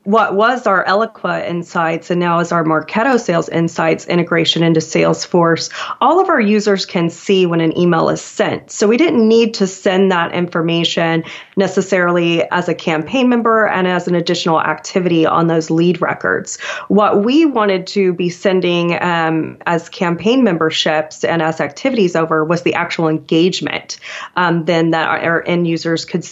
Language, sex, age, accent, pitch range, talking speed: English, female, 30-49, American, 160-190 Hz, 170 wpm